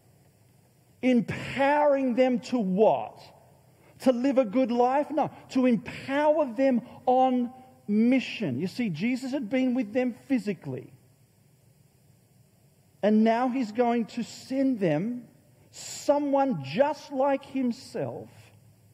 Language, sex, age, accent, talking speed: English, male, 40-59, Australian, 110 wpm